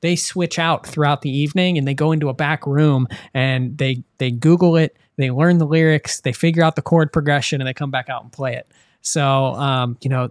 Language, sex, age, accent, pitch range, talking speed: English, male, 20-39, American, 135-165 Hz, 235 wpm